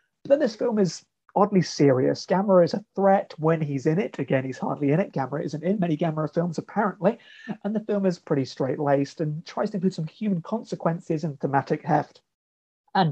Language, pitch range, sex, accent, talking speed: English, 155-200 Hz, male, British, 200 wpm